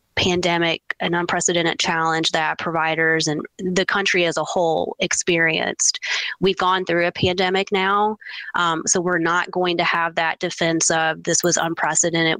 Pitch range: 165-185 Hz